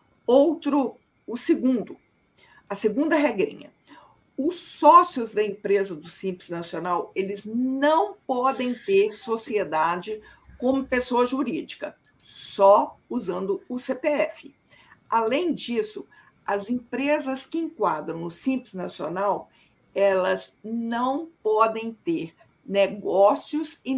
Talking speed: 100 wpm